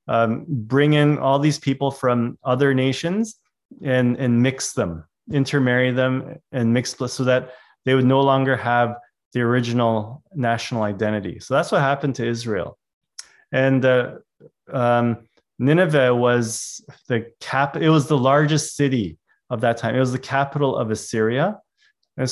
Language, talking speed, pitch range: English, 150 wpm, 115-145 Hz